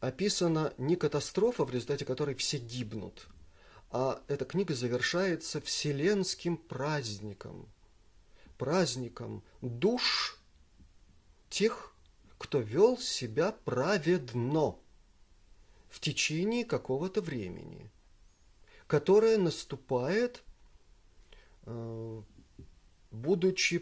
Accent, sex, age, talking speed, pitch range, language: native, male, 30-49, 70 wpm, 115-175 Hz, Russian